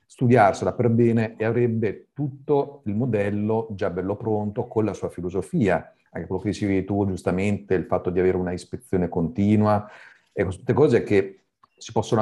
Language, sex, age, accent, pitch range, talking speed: Italian, male, 50-69, native, 95-120 Hz, 165 wpm